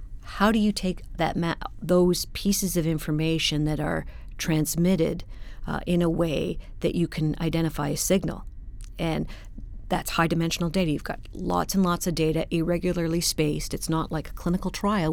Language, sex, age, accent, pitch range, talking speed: English, female, 50-69, American, 155-175 Hz, 165 wpm